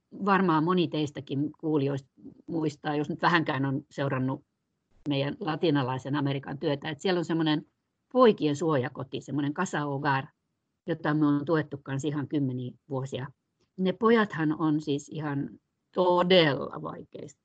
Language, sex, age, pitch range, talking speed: Finnish, female, 50-69, 145-185 Hz, 125 wpm